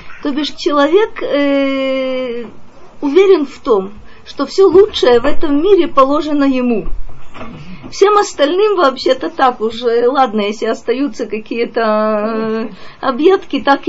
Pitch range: 240-315 Hz